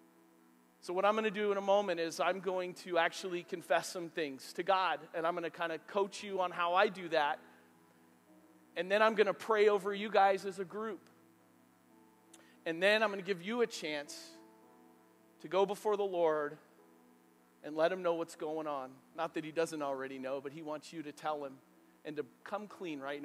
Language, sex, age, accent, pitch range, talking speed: English, male, 40-59, American, 110-175 Hz, 215 wpm